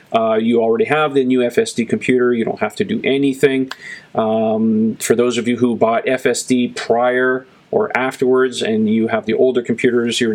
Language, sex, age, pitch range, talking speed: English, male, 40-59, 120-140 Hz, 185 wpm